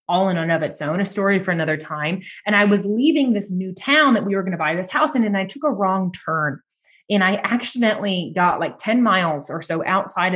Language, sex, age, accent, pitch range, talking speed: English, female, 20-39, American, 165-210 Hz, 250 wpm